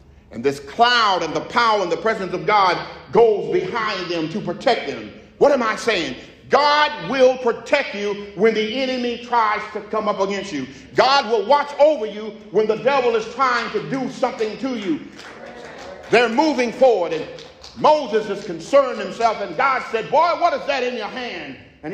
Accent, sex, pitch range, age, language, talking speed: American, male, 205-280 Hz, 50-69, English, 185 wpm